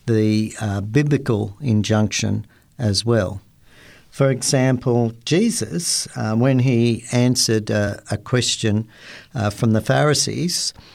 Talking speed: 110 wpm